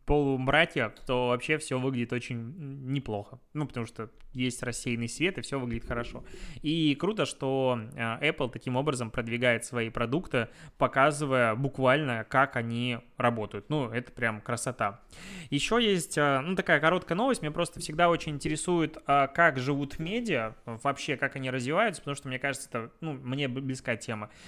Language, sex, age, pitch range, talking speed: Russian, male, 20-39, 125-160 Hz, 150 wpm